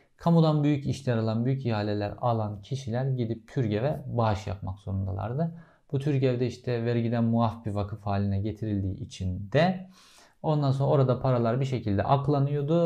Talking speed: 145 wpm